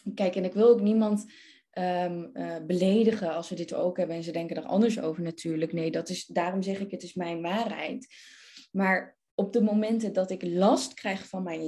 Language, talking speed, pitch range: Dutch, 195 wpm, 180-245 Hz